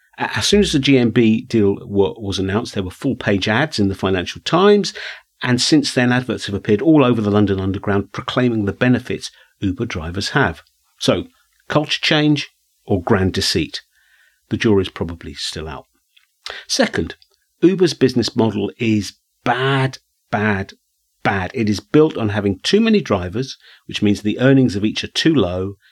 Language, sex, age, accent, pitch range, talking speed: English, male, 50-69, British, 100-130 Hz, 160 wpm